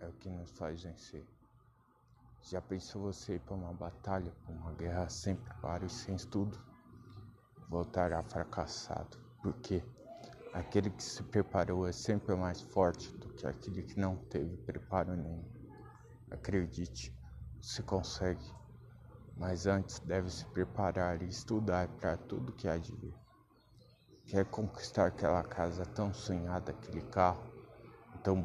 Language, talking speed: Portuguese, 135 wpm